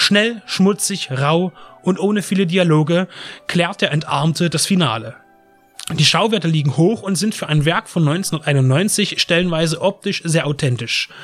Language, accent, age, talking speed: German, German, 30-49, 145 wpm